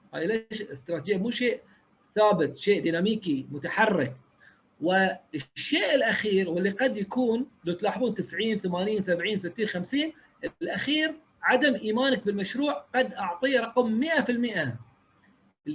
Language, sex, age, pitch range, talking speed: Arabic, male, 40-59, 190-265 Hz, 110 wpm